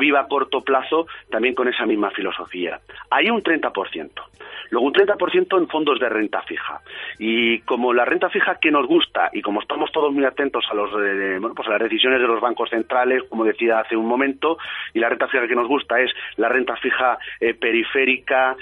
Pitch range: 115-145 Hz